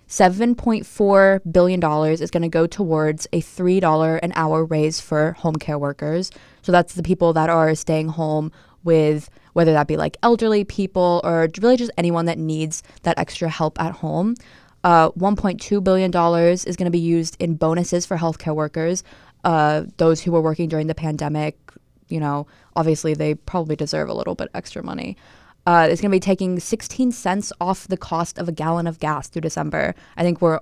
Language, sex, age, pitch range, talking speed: English, female, 20-39, 160-185 Hz, 185 wpm